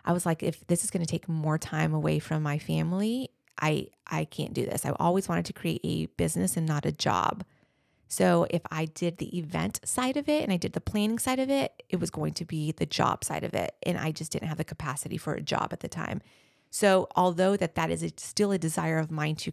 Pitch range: 150-180 Hz